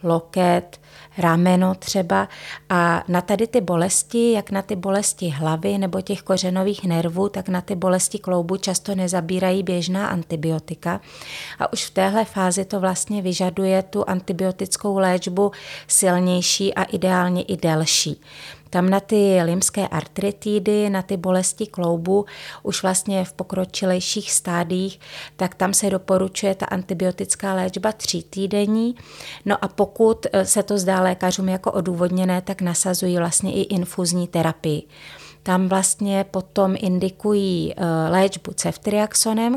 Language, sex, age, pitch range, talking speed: Czech, female, 30-49, 180-200 Hz, 130 wpm